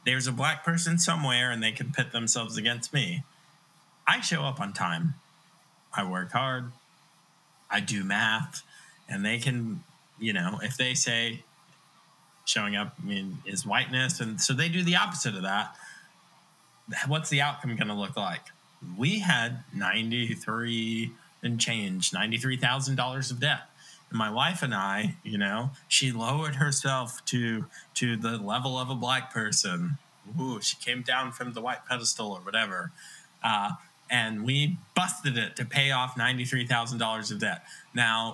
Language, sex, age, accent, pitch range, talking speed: English, male, 20-39, American, 120-160 Hz, 155 wpm